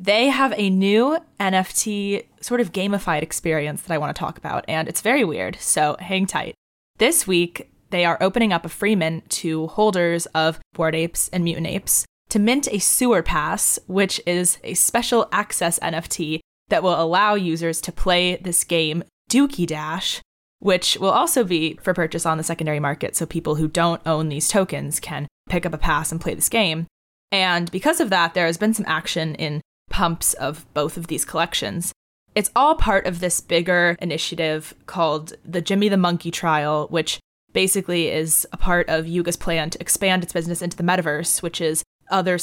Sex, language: female, English